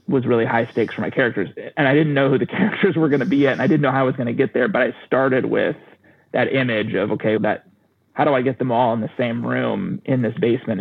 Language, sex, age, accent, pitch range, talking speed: English, male, 30-49, American, 120-140 Hz, 290 wpm